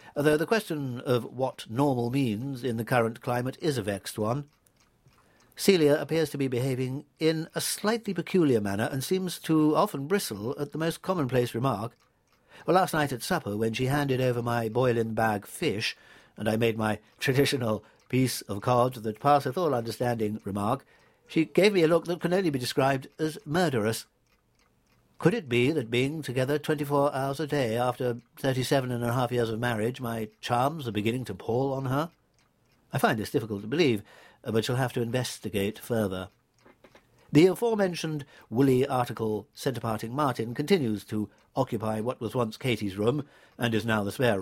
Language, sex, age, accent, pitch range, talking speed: English, male, 60-79, British, 115-145 Hz, 175 wpm